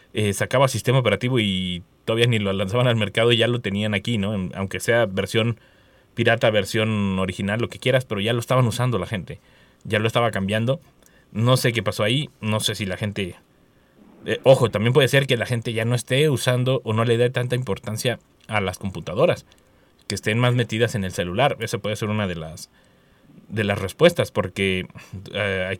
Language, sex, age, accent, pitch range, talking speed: Spanish, male, 30-49, Mexican, 100-120 Hz, 200 wpm